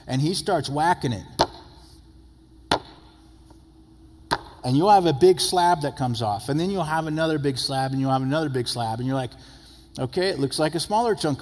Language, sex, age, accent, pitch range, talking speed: English, male, 50-69, American, 100-140 Hz, 195 wpm